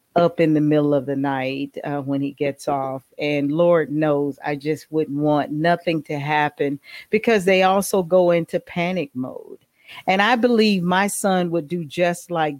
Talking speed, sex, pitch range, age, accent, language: 180 wpm, female, 150-220 Hz, 40-59, American, English